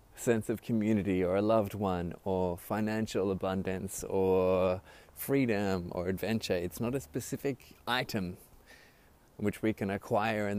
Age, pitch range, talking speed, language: 20-39, 95-130 Hz, 135 wpm, English